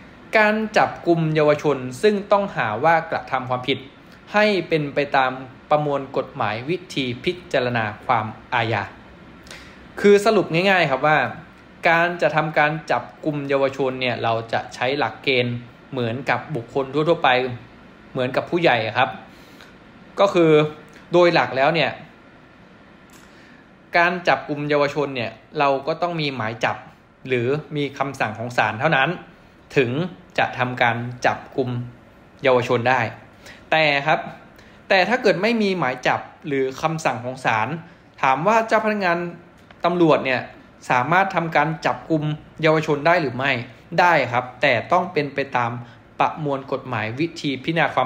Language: Thai